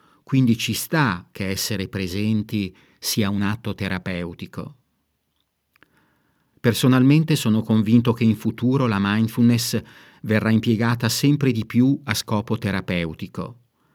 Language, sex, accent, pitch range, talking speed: Italian, male, native, 100-125 Hz, 110 wpm